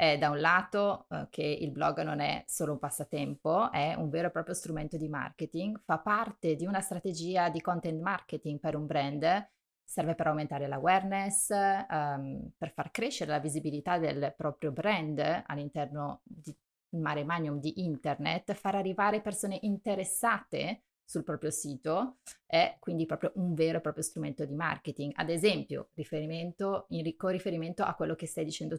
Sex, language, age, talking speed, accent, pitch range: female, Italian, 30-49, 165 wpm, native, 150-185 Hz